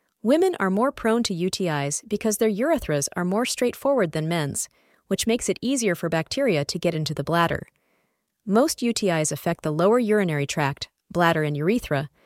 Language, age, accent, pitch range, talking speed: English, 30-49, American, 155-235 Hz, 170 wpm